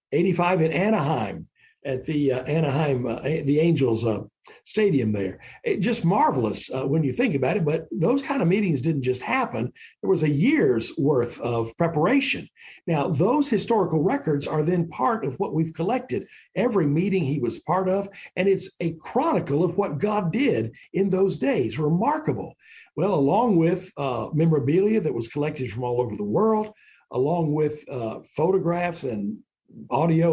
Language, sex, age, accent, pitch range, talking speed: English, male, 60-79, American, 130-185 Hz, 165 wpm